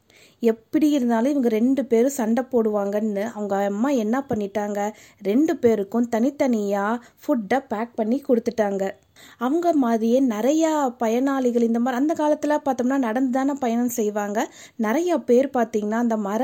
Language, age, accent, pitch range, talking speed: Tamil, 20-39, native, 220-275 Hz, 120 wpm